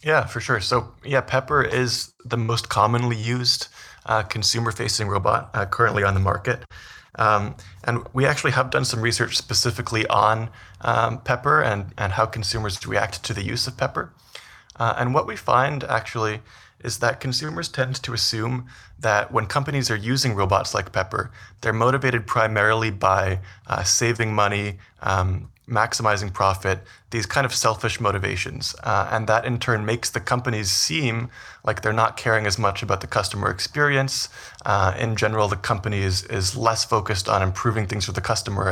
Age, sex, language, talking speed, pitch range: 20-39, male, English, 170 wpm, 100-120 Hz